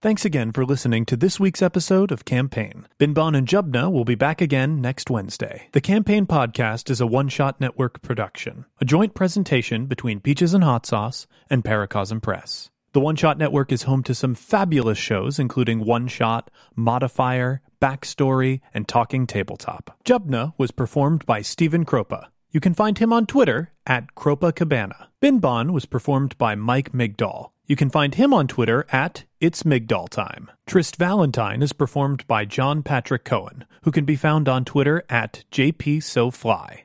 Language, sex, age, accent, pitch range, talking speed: English, male, 30-49, American, 120-155 Hz, 165 wpm